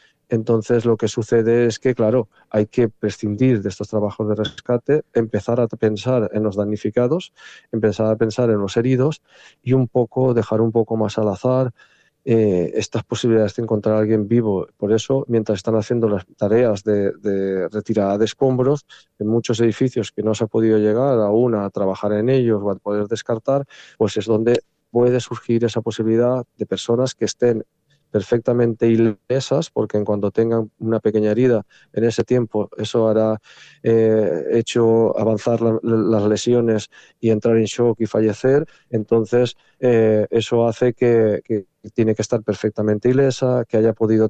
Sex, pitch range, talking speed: male, 105-120 Hz, 170 wpm